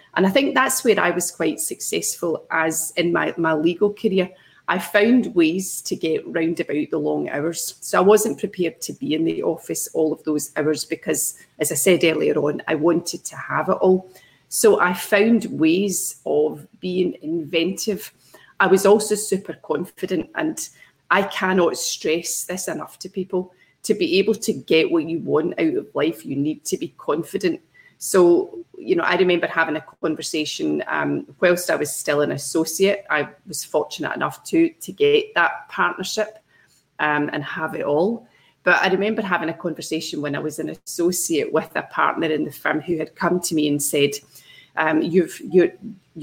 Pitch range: 160-215 Hz